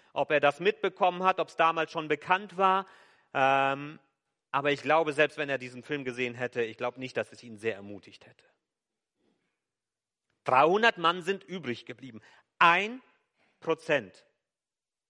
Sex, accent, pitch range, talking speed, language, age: male, German, 115-170 Hz, 150 wpm, German, 40-59